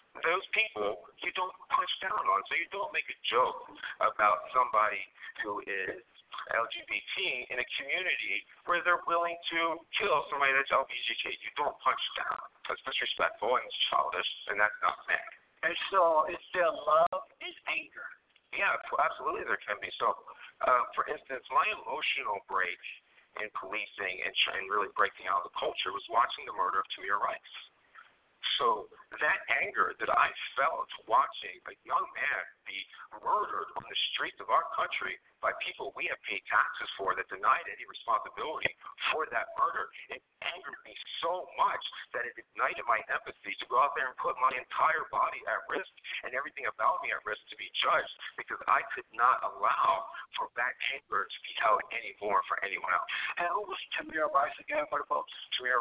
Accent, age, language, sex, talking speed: American, 50-69, English, male, 175 wpm